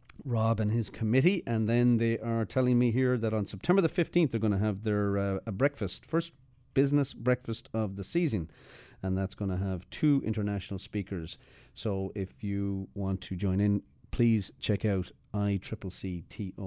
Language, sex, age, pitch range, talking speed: English, male, 40-59, 95-125 Hz, 175 wpm